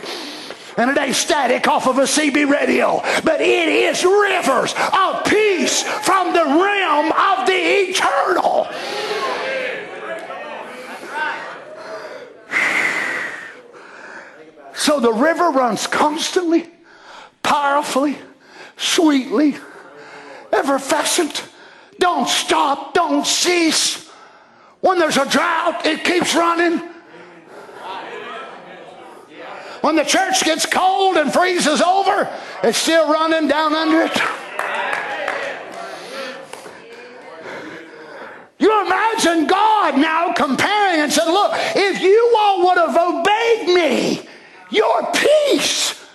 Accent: American